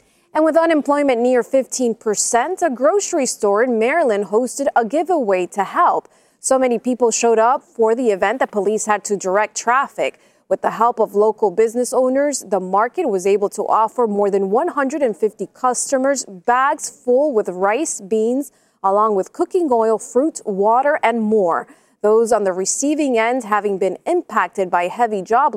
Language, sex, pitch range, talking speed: English, female, 205-270 Hz, 165 wpm